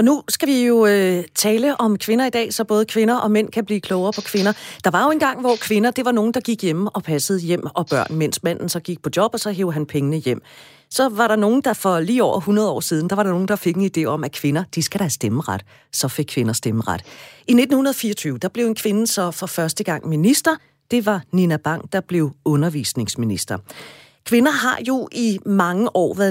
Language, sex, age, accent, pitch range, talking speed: Danish, female, 40-59, native, 160-225 Hz, 240 wpm